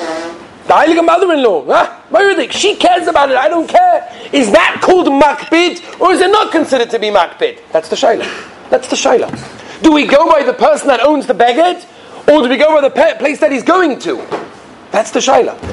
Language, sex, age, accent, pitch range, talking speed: English, male, 40-59, British, 185-295 Hz, 200 wpm